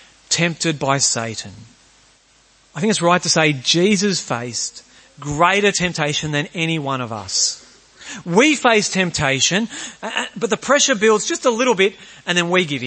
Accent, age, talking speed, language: Australian, 40-59, 155 wpm, English